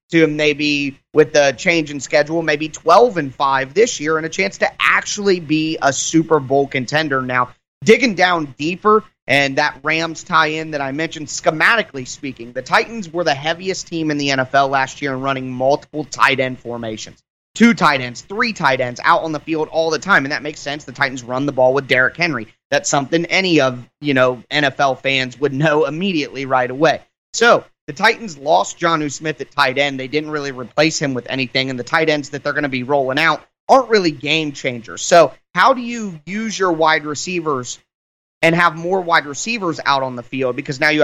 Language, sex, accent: English, male, American